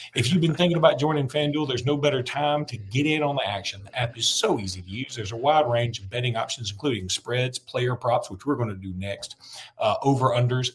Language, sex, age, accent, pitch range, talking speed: English, male, 40-59, American, 110-140 Hz, 245 wpm